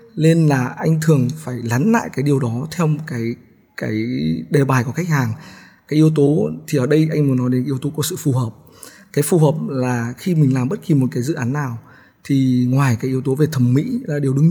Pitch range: 130-165 Hz